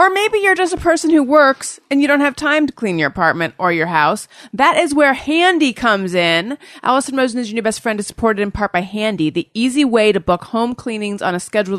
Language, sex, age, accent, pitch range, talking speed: English, female, 30-49, American, 185-240 Hz, 250 wpm